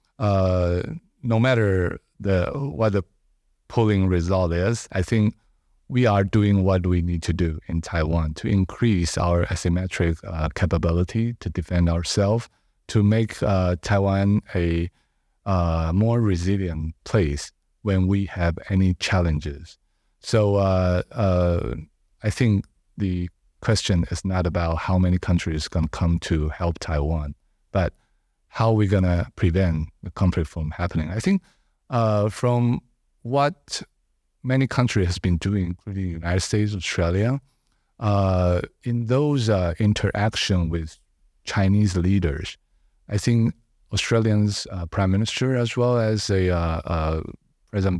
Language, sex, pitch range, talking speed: English, male, 85-110 Hz, 140 wpm